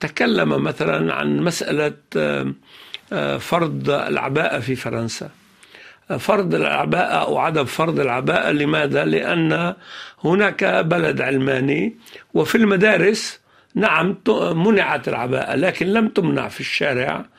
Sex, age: male, 60-79